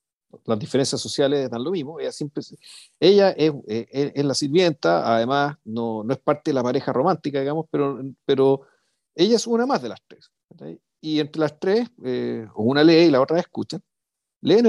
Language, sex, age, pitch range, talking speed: Spanish, male, 50-69, 120-150 Hz, 190 wpm